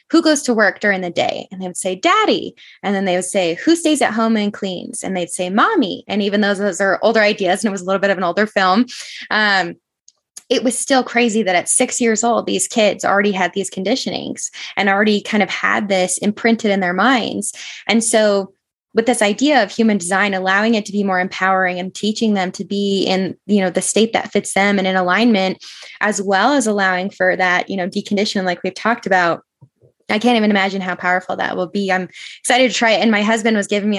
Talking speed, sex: 235 wpm, female